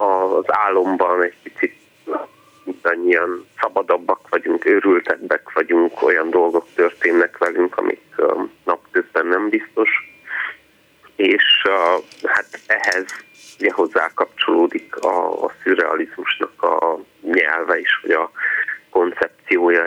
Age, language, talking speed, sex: 30-49, Hungarian, 105 wpm, male